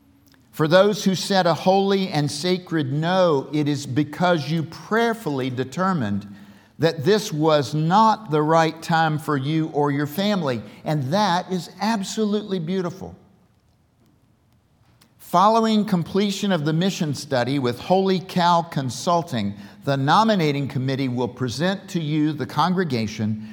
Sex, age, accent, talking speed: male, 50-69, American, 130 wpm